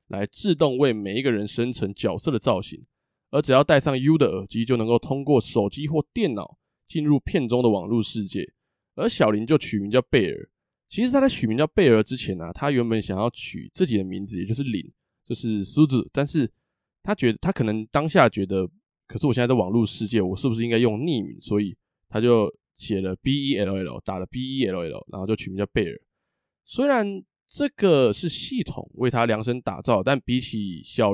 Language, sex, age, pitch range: Chinese, male, 20-39, 110-140 Hz